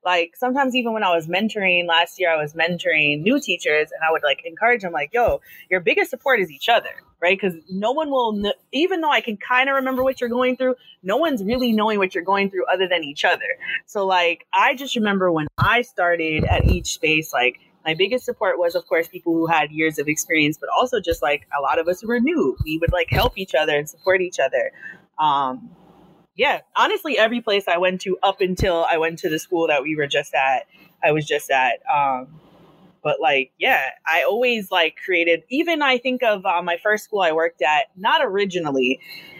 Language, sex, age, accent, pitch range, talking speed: English, female, 20-39, American, 160-220 Hz, 220 wpm